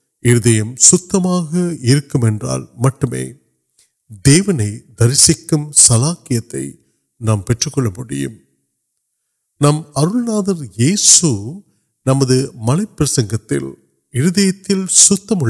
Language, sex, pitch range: Urdu, male, 115-155 Hz